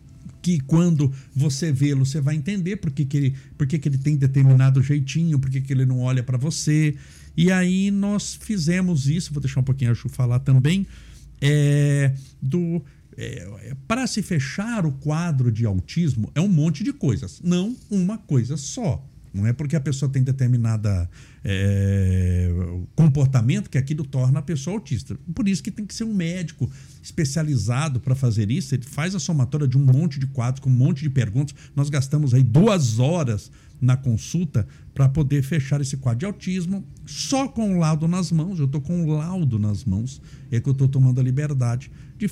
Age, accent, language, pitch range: 60-79, Brazilian, Portuguese, 130-180 Hz